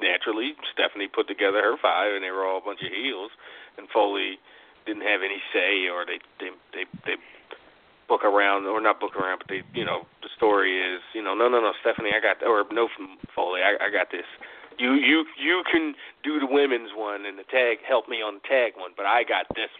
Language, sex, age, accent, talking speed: English, male, 40-59, American, 230 wpm